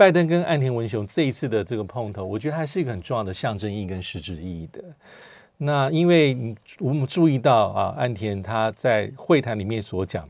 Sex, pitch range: male, 95-130 Hz